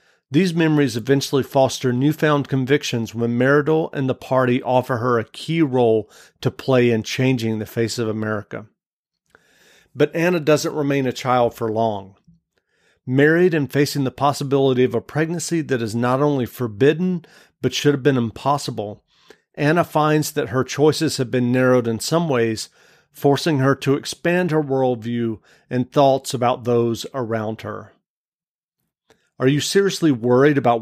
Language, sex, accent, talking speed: English, male, American, 150 wpm